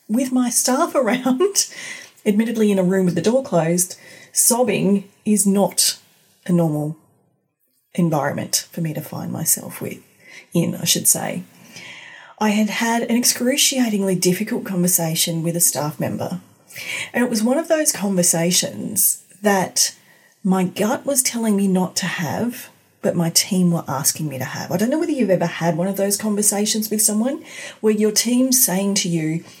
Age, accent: 30-49, Australian